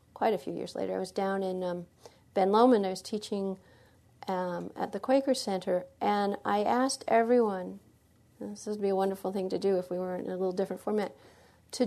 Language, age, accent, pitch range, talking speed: English, 40-59, American, 185-220 Hz, 205 wpm